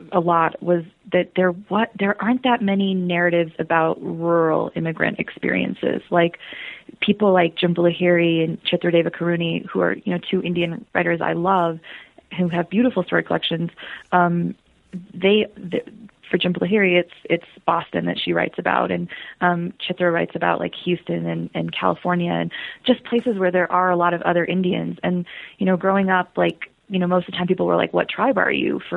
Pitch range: 170-185 Hz